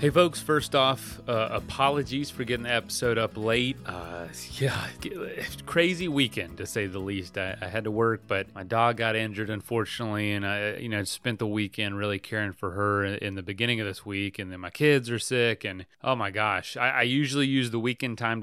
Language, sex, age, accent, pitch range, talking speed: English, male, 30-49, American, 105-130 Hz, 210 wpm